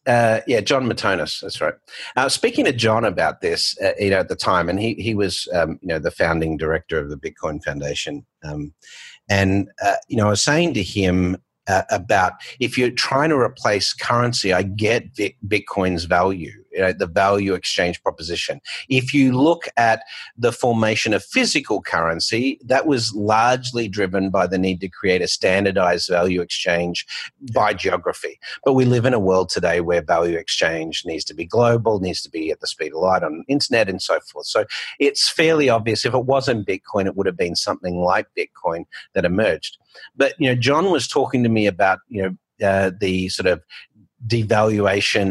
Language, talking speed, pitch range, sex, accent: English, 190 wpm, 95-125 Hz, male, Australian